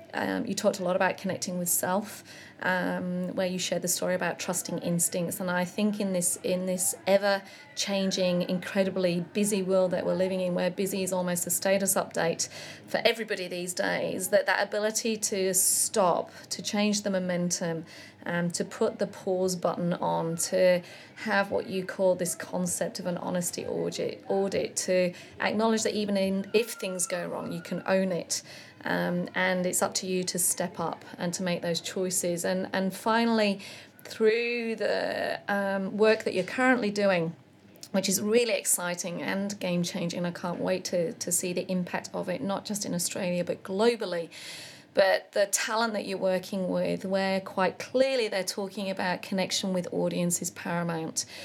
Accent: British